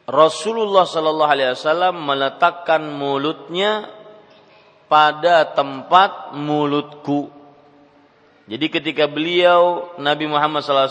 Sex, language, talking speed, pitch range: male, Malay, 85 wpm, 135-170 Hz